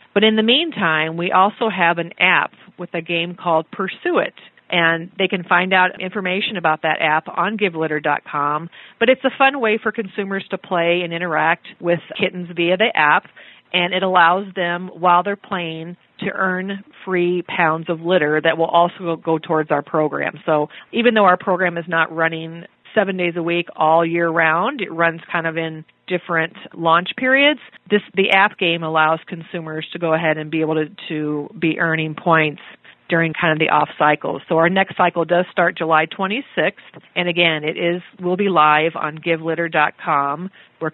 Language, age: English, 40-59